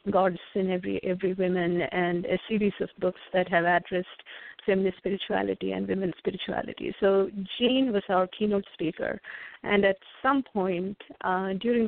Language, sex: English, female